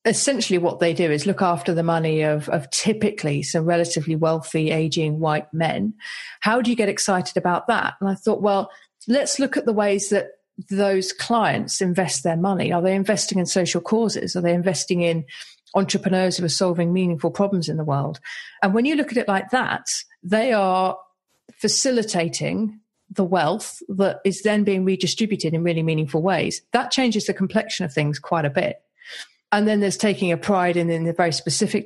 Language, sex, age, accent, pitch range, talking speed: English, female, 40-59, British, 170-215 Hz, 190 wpm